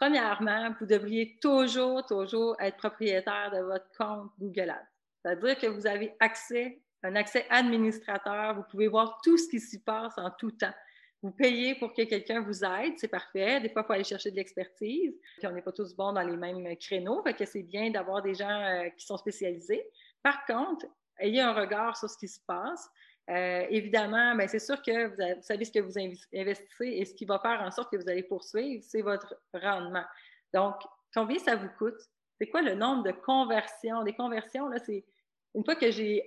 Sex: female